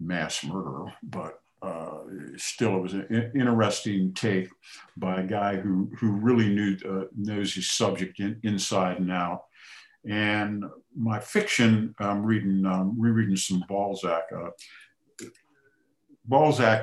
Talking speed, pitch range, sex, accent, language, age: 130 wpm, 95-115 Hz, male, American, English, 50-69